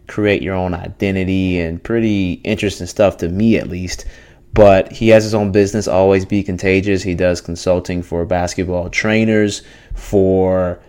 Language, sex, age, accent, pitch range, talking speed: English, male, 30-49, American, 90-100 Hz, 155 wpm